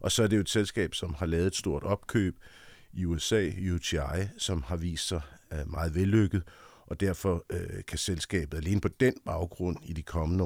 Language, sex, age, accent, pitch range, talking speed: Danish, male, 60-79, native, 85-100 Hz, 190 wpm